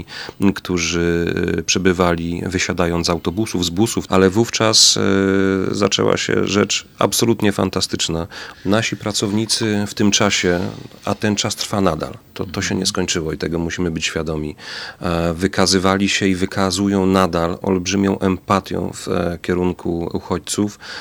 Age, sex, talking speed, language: 40-59, male, 125 wpm, Polish